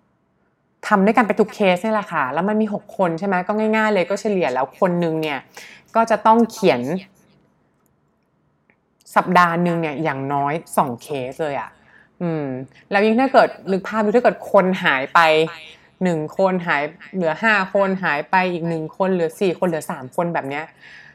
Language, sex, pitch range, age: English, female, 160-205 Hz, 20-39